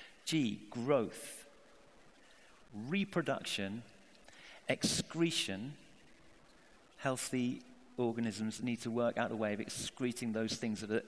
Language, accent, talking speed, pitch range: English, British, 100 wpm, 115-165 Hz